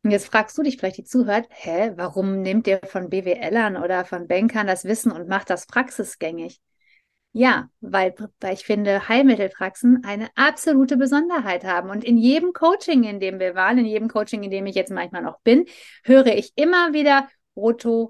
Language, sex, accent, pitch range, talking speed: German, female, German, 205-265 Hz, 185 wpm